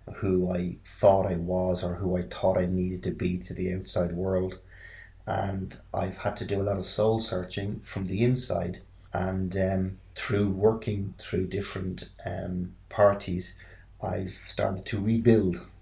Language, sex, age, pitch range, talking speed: English, male, 30-49, 95-105 Hz, 160 wpm